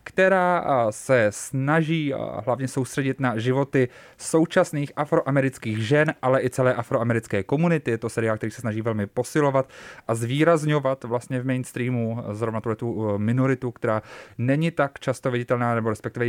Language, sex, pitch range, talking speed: Czech, male, 120-140 Hz, 140 wpm